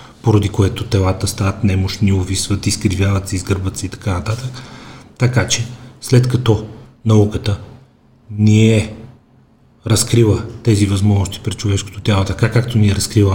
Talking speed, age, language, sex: 140 wpm, 40-59, Bulgarian, male